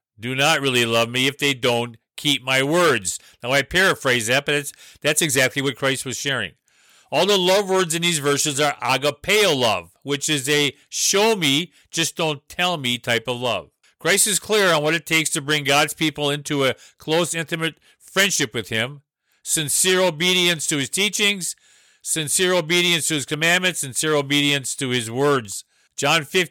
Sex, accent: male, American